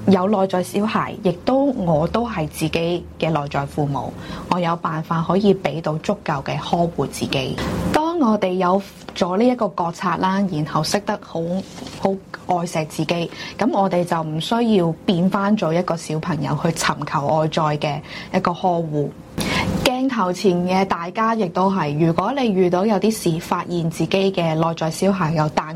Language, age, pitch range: Chinese, 20-39, 160-200 Hz